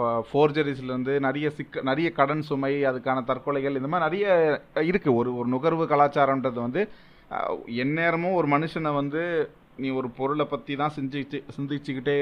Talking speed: 150 wpm